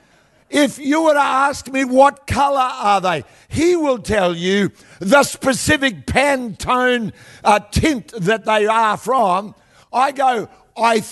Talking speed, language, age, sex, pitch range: 140 wpm, English, 50-69, male, 180-255 Hz